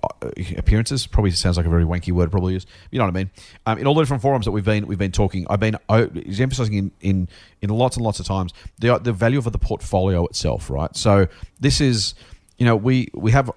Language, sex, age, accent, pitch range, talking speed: English, male, 40-59, Australian, 95-120 Hz, 240 wpm